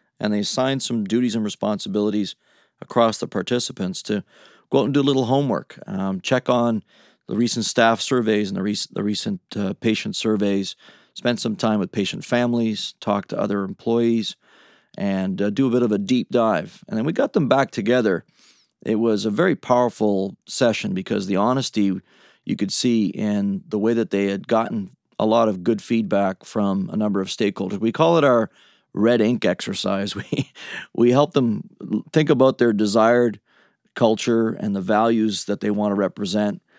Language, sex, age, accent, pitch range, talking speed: English, male, 30-49, American, 100-120 Hz, 180 wpm